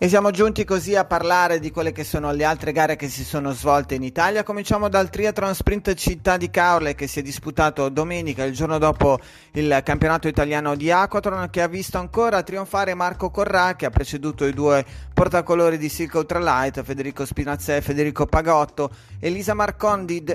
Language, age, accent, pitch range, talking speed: Italian, 30-49, native, 140-175 Hz, 185 wpm